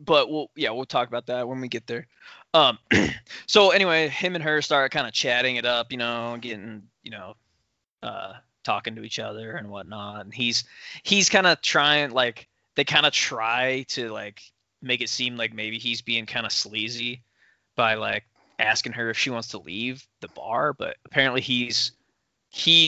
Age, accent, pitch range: 20-39, American, 115-135 Hz